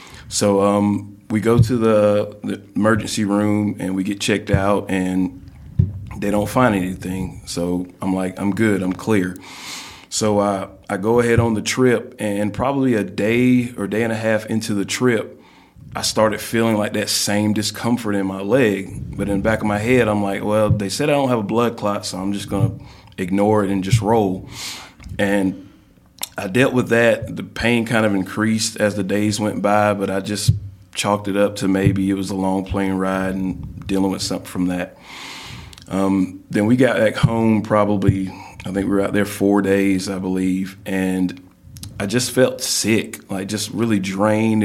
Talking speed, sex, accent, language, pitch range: 195 wpm, male, American, English, 95-110 Hz